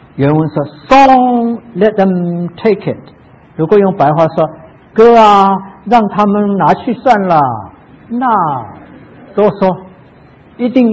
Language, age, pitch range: Chinese, 50-69, 135-200 Hz